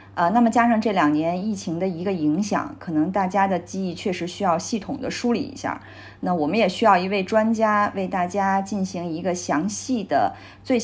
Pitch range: 170-225 Hz